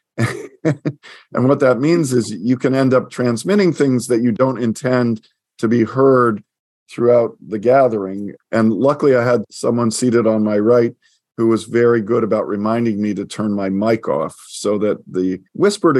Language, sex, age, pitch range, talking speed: English, male, 50-69, 110-130 Hz, 175 wpm